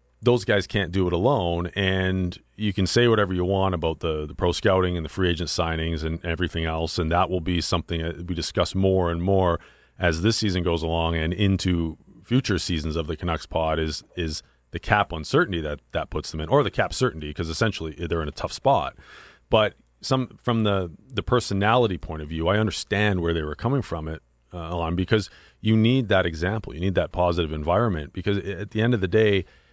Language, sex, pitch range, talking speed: English, male, 80-110 Hz, 215 wpm